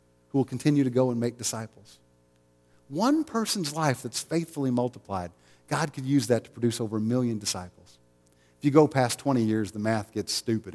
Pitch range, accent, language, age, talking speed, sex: 95-130 Hz, American, English, 50-69, 190 wpm, male